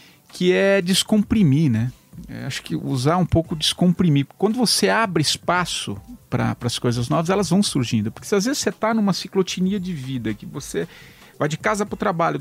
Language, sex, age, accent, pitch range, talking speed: English, male, 50-69, Brazilian, 150-220 Hz, 190 wpm